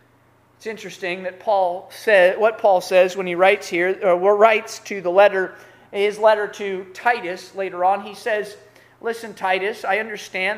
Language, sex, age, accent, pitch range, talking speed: English, male, 30-49, American, 180-255 Hz, 165 wpm